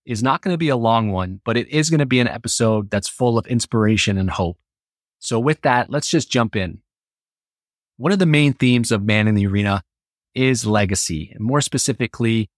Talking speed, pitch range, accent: 210 wpm, 105-125 Hz, American